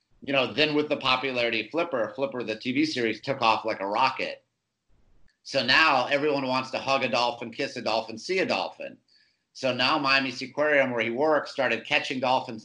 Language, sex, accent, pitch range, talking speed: English, male, American, 110-135 Hz, 190 wpm